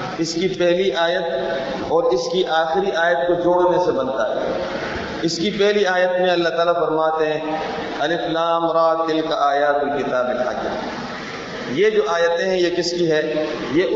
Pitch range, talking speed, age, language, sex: 170-220 Hz, 170 wpm, 40-59, Urdu, female